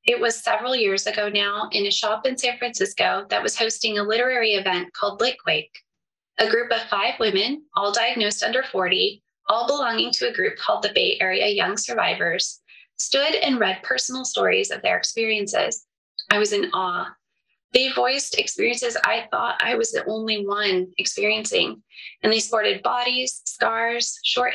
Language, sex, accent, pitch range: English, female, American, 210-280 Hz